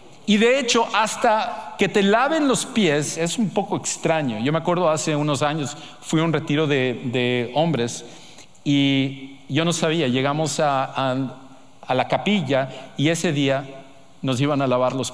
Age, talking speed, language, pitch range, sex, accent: 50-69, 175 wpm, English, 135-170 Hz, male, Mexican